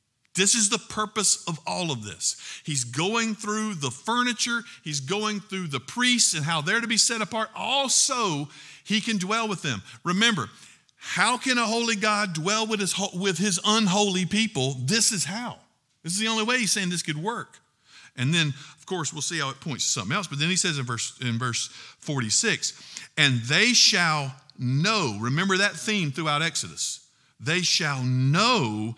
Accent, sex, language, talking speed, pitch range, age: American, male, English, 185 wpm, 130-195 Hz, 50-69